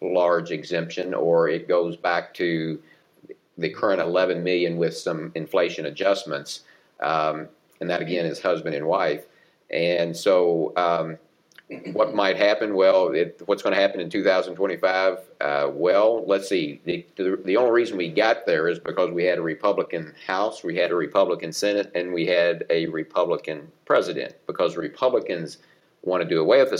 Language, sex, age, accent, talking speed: English, male, 50-69, American, 165 wpm